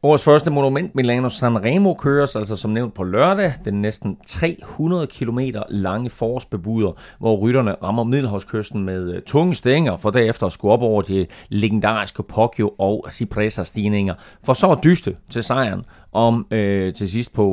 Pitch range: 105-145 Hz